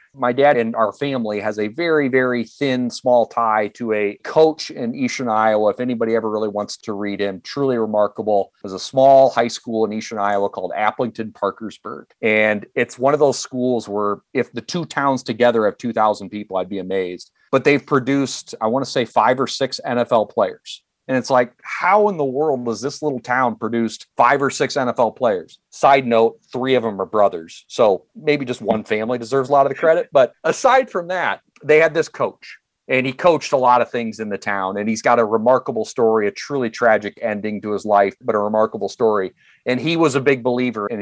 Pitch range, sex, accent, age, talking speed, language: 110-140 Hz, male, American, 30-49, 215 wpm, English